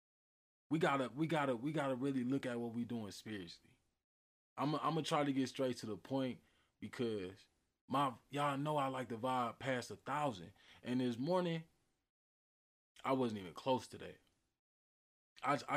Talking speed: 170 wpm